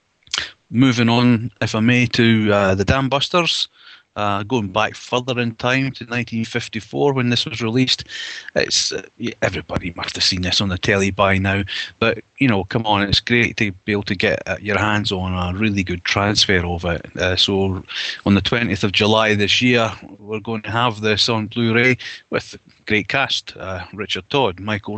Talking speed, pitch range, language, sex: 190 wpm, 100-120 Hz, English, male